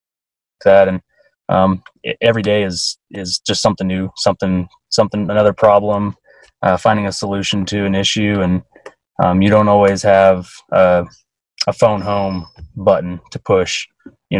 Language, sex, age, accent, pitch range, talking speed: English, male, 20-39, American, 95-105 Hz, 145 wpm